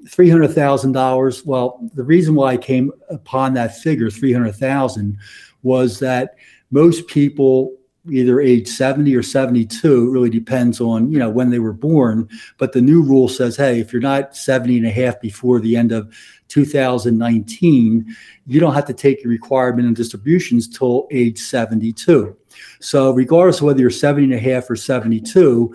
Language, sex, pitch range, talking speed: English, male, 115-140 Hz, 170 wpm